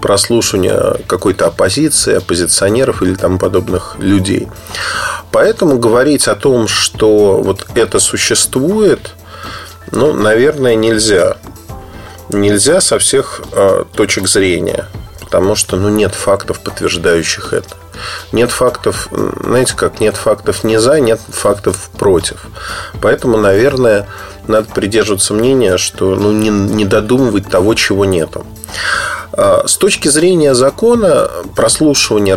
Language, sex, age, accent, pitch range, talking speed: Russian, male, 30-49, native, 100-140 Hz, 115 wpm